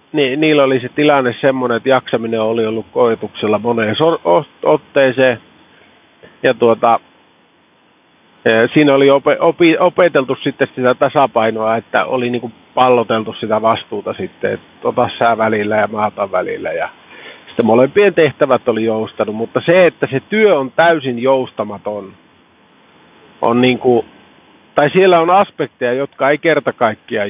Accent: native